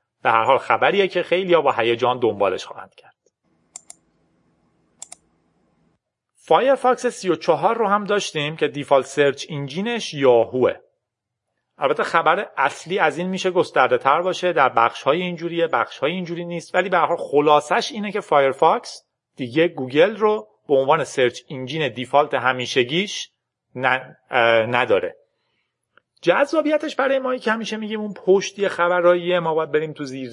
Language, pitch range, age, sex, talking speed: Persian, 135-195 Hz, 40-59, male, 140 wpm